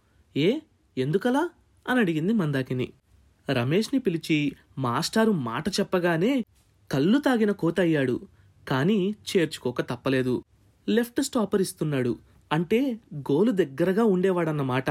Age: 20-39